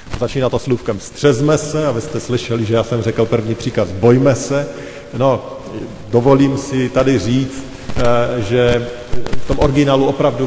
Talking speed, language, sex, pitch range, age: 150 wpm, Slovak, male, 110-145 Hz, 40-59